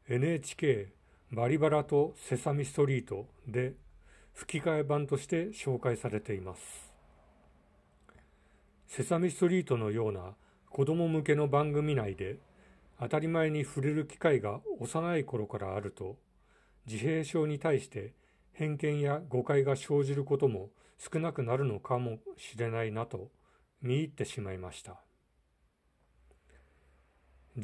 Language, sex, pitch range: Japanese, male, 105-150 Hz